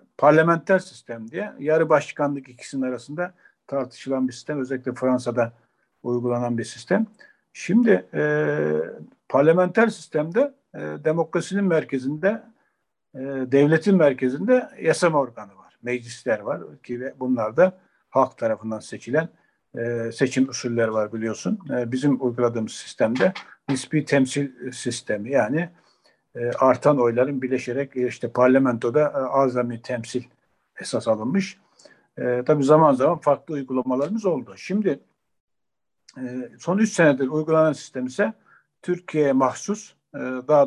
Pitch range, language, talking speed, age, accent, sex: 125-165 Hz, Turkish, 110 wpm, 60-79, native, male